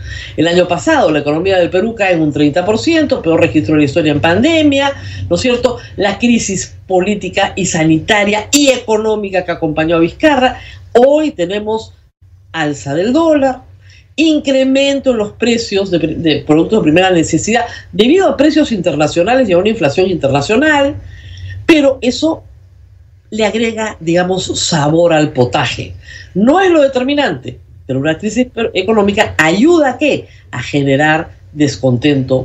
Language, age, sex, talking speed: Spanish, 50-69, female, 145 wpm